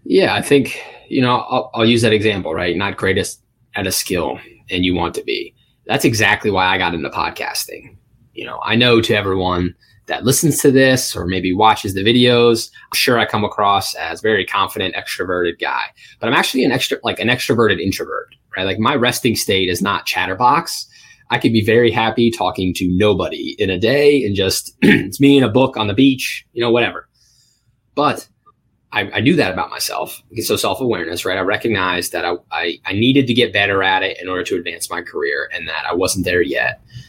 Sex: male